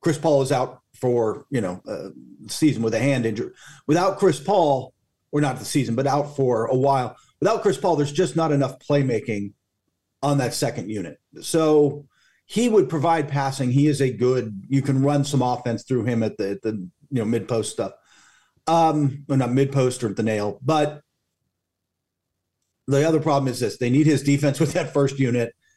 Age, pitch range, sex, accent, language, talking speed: 50-69, 120-150 Hz, male, American, English, 200 wpm